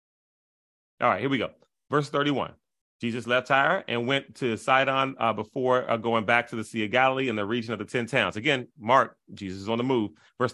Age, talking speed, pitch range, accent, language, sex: 30-49, 220 wpm, 120-145 Hz, American, English, male